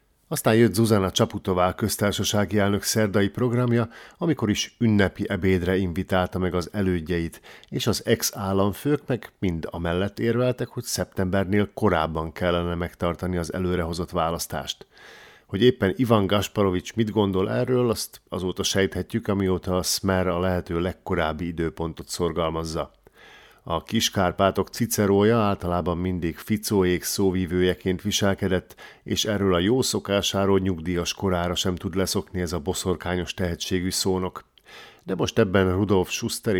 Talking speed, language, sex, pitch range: 125 wpm, Hungarian, male, 90-105 Hz